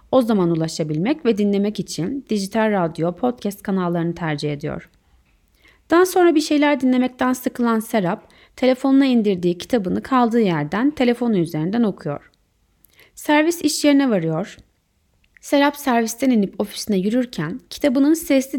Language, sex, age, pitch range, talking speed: Turkish, female, 30-49, 180-265 Hz, 125 wpm